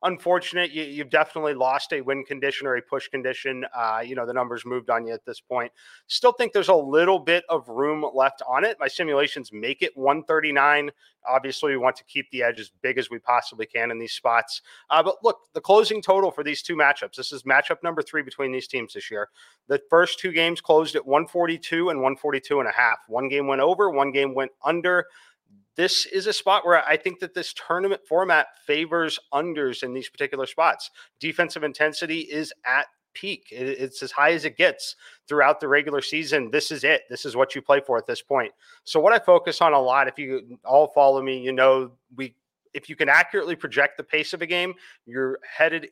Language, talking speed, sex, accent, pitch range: English, 215 wpm, male, American, 130-175 Hz